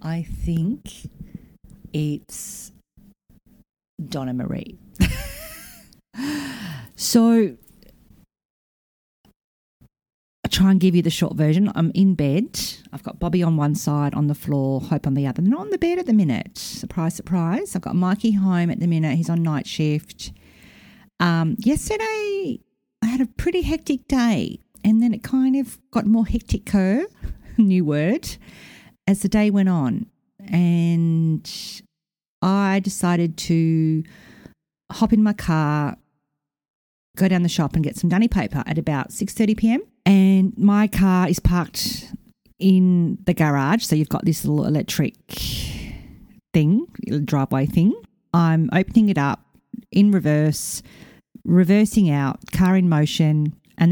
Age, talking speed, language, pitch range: 50-69, 135 wpm, English, 160-210 Hz